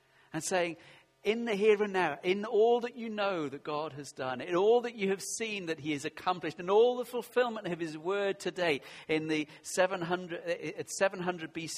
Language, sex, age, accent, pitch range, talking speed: English, male, 50-69, British, 135-180 Hz, 205 wpm